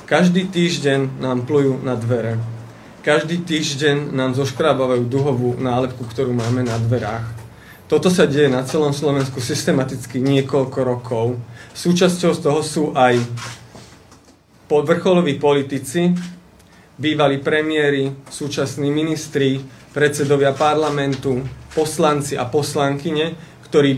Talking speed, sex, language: 105 wpm, male, Slovak